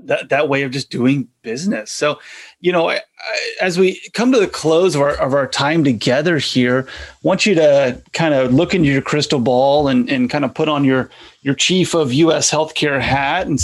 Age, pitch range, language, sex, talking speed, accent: 30-49, 125-165 Hz, English, male, 220 wpm, American